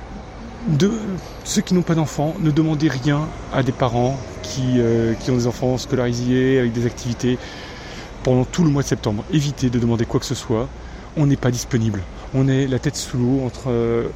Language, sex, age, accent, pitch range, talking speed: French, male, 30-49, French, 115-140 Hz, 195 wpm